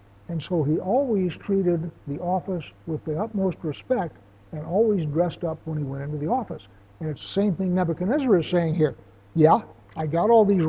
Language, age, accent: English, 60-79, American